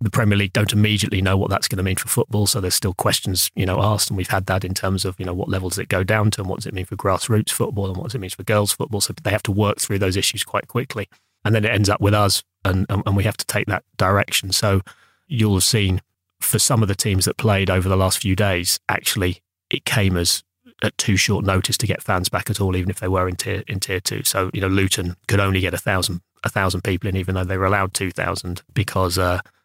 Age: 30-49